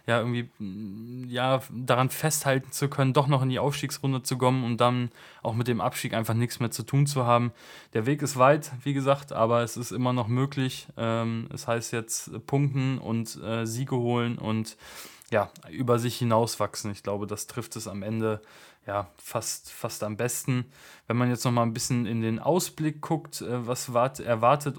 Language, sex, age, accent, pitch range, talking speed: German, male, 20-39, German, 115-135 Hz, 190 wpm